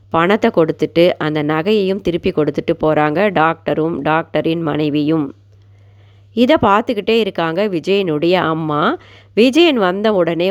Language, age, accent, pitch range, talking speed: Tamil, 30-49, native, 160-195 Hz, 105 wpm